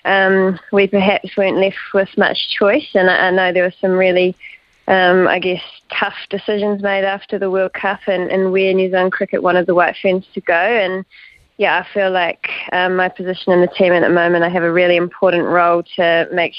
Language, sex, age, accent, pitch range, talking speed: English, female, 20-39, Australian, 180-195 Hz, 215 wpm